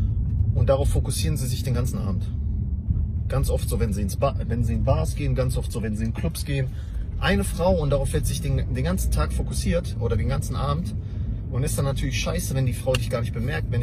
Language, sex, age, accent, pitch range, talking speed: English, male, 30-49, German, 100-125 Hz, 245 wpm